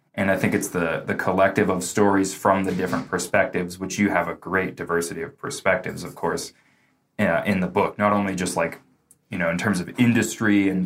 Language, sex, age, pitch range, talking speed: English, male, 20-39, 90-115 Hz, 205 wpm